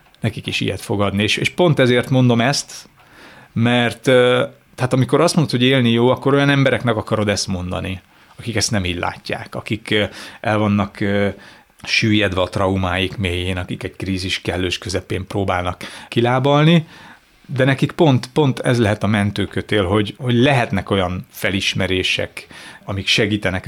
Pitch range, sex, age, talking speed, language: 100-130 Hz, male, 30-49, 145 wpm, Hungarian